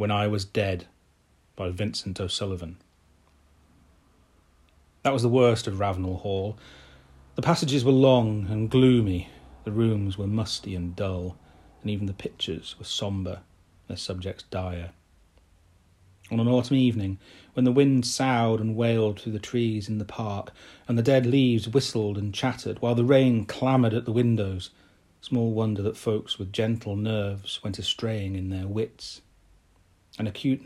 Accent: British